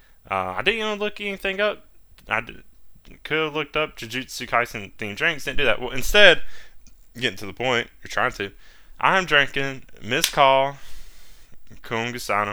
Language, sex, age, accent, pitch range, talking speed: English, male, 20-39, American, 100-145 Hz, 160 wpm